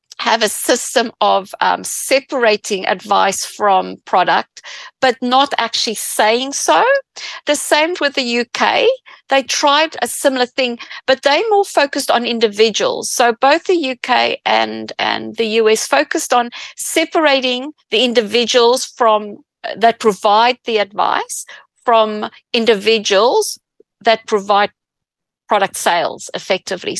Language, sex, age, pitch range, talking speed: English, female, 50-69, 220-275 Hz, 120 wpm